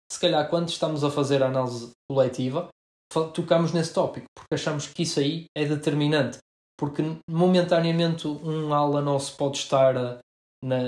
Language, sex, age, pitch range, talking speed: Portuguese, male, 20-39, 140-155 Hz, 150 wpm